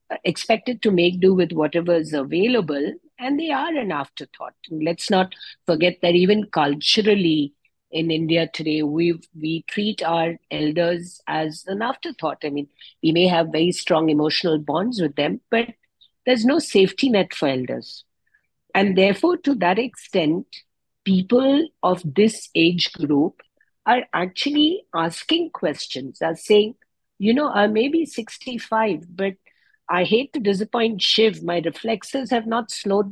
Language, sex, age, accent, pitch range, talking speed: English, female, 50-69, Indian, 170-225 Hz, 145 wpm